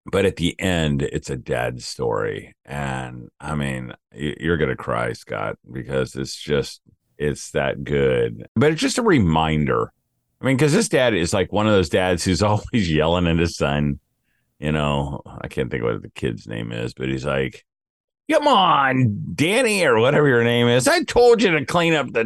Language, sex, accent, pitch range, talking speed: English, male, American, 70-110 Hz, 195 wpm